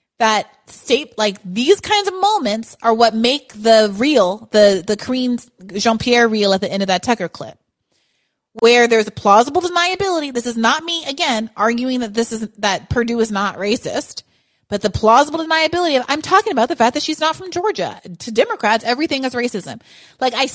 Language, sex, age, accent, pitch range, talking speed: English, female, 30-49, American, 200-250 Hz, 190 wpm